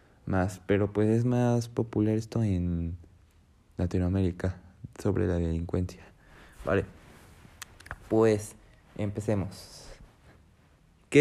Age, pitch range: 20-39, 100-125 Hz